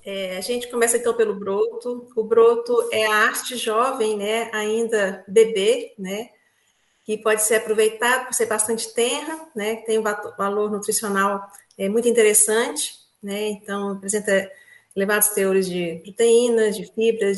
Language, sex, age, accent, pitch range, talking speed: Portuguese, female, 40-59, Brazilian, 195-245 Hz, 150 wpm